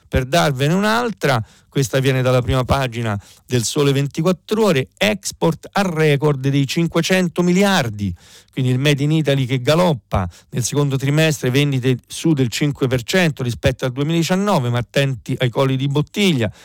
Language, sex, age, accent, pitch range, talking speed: Italian, male, 50-69, native, 125-165 Hz, 150 wpm